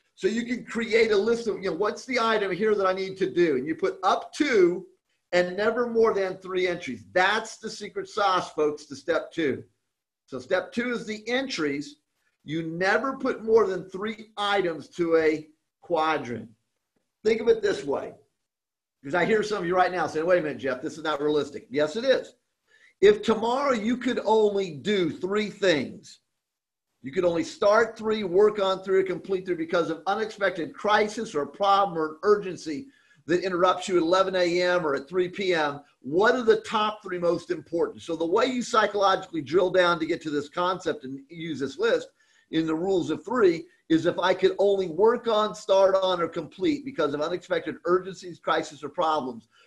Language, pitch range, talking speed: English, 165-220 Hz, 195 wpm